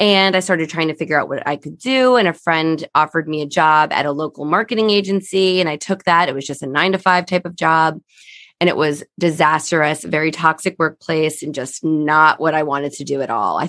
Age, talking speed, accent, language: 20-39, 240 wpm, American, English